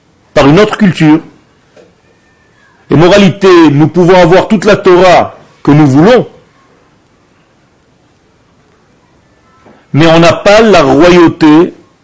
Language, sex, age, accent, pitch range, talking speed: French, male, 40-59, French, 140-175 Hz, 105 wpm